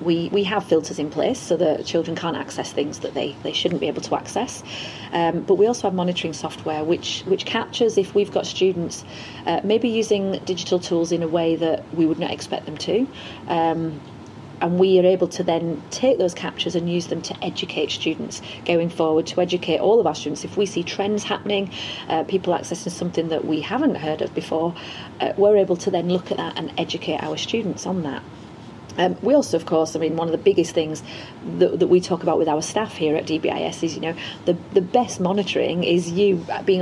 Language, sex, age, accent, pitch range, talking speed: English, female, 30-49, British, 160-190 Hz, 220 wpm